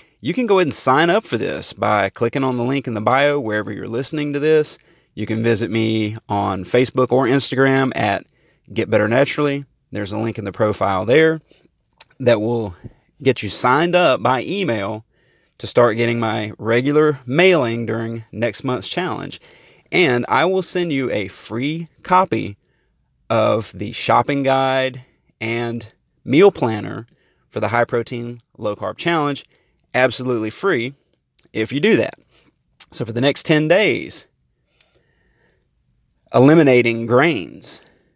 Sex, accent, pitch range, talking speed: male, American, 110-145 Hz, 150 wpm